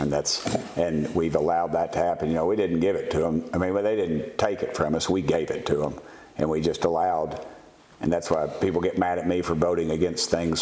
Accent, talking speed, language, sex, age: American, 260 wpm, English, male, 60-79